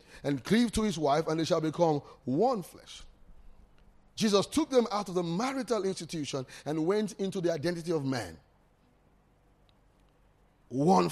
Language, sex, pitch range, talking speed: English, male, 145-185 Hz, 145 wpm